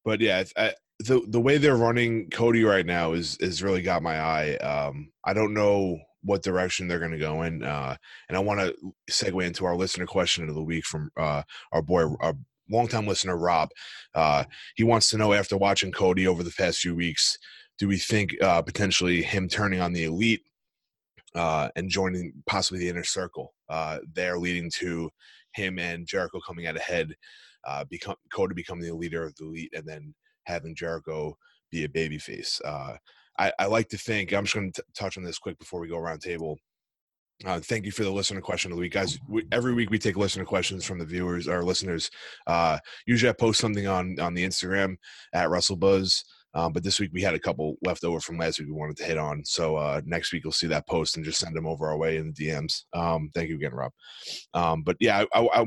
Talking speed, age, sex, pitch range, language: 225 wpm, 20-39, male, 80-100 Hz, English